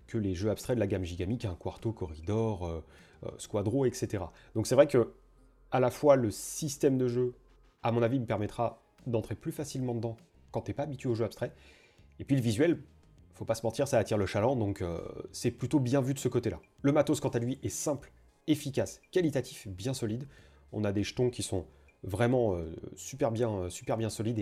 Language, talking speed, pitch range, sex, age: French, 220 wpm, 100-130 Hz, male, 30-49